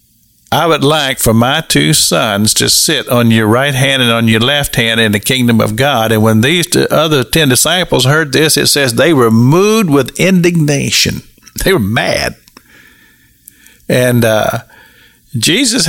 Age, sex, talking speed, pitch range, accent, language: 50-69, male, 170 wpm, 110-155 Hz, American, English